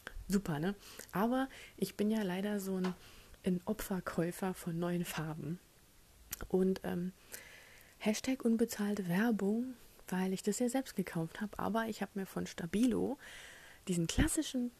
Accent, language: German, German